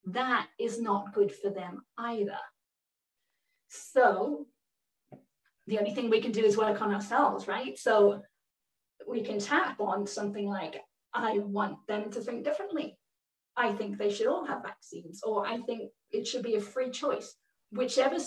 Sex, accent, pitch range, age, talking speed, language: female, British, 205-255 Hz, 30-49, 160 wpm, English